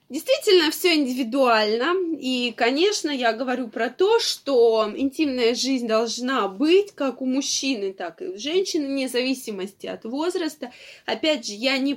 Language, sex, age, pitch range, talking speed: Russian, female, 20-39, 225-300 Hz, 145 wpm